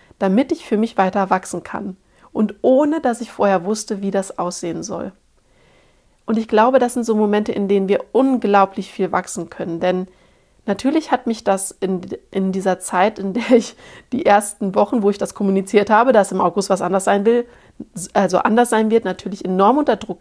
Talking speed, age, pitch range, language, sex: 195 wpm, 40-59, 190-225 Hz, German, female